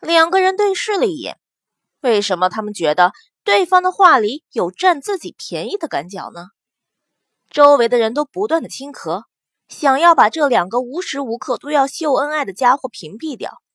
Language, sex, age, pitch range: Chinese, female, 20-39, 240-345 Hz